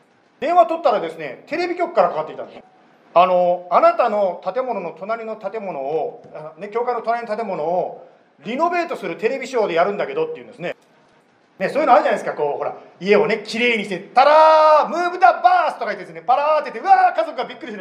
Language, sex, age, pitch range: Japanese, male, 40-59, 195-290 Hz